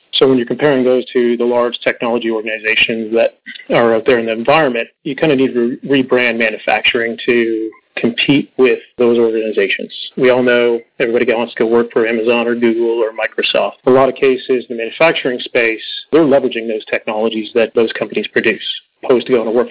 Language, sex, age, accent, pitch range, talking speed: English, male, 30-49, American, 115-135 Hz, 200 wpm